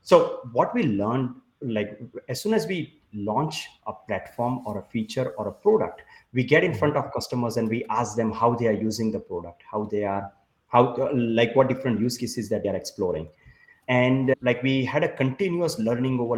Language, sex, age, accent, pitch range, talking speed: English, male, 30-49, Indian, 110-135 Hz, 200 wpm